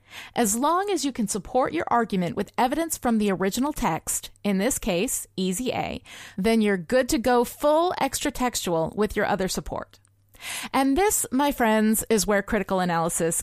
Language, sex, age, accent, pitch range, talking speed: English, female, 30-49, American, 205-280 Hz, 170 wpm